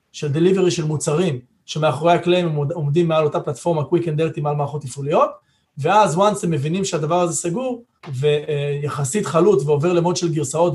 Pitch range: 150-185 Hz